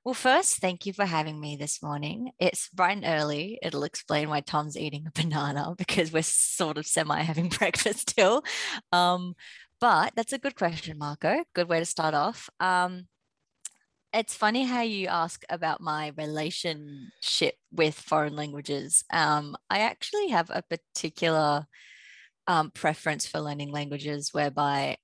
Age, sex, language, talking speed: 20-39, female, English, 155 wpm